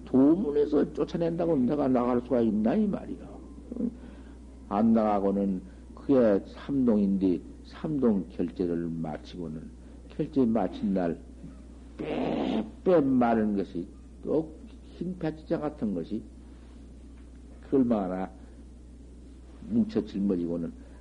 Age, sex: 60-79, male